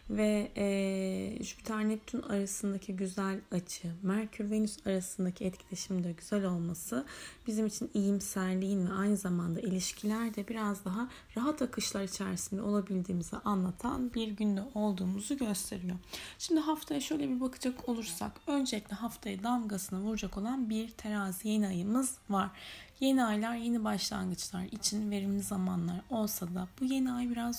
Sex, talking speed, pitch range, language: female, 130 wpm, 190-240 Hz, Turkish